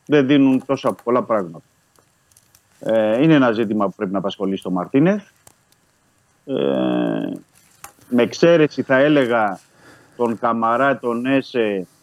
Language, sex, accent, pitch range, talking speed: Greek, male, native, 100-140 Hz, 115 wpm